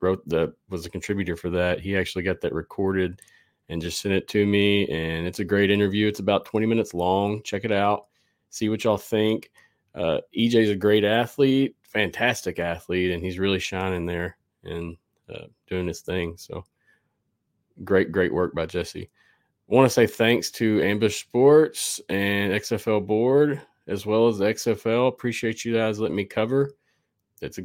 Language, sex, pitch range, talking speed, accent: English, male, 90-115 Hz, 180 wpm, American